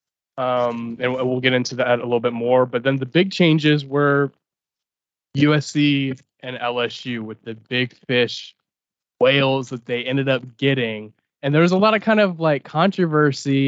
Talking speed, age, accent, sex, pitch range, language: 170 wpm, 20-39, American, male, 125-150 Hz, English